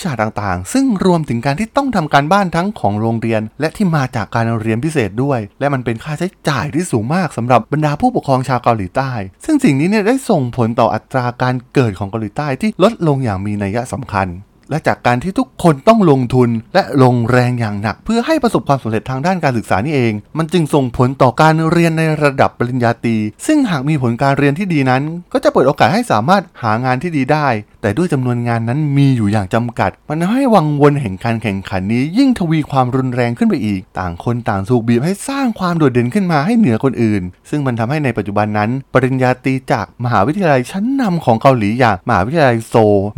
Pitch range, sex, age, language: 115-160 Hz, male, 20-39, Thai